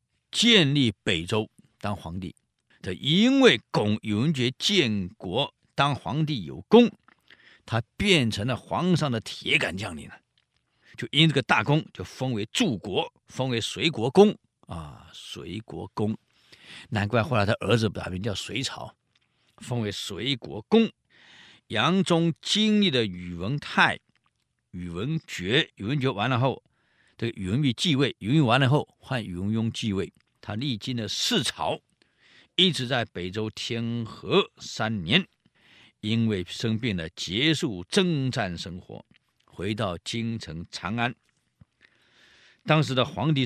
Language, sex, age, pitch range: Chinese, male, 50-69, 100-140 Hz